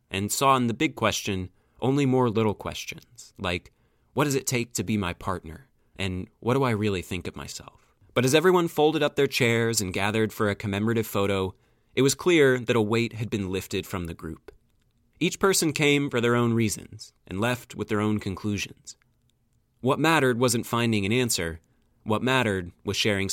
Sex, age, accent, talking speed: male, 30-49, American, 195 wpm